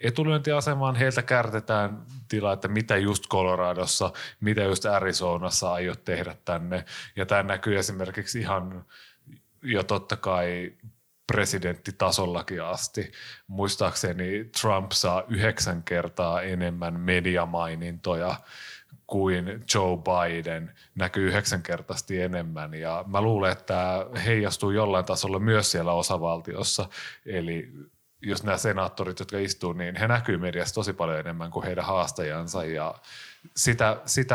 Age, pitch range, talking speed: 30-49, 90-110 Hz, 120 wpm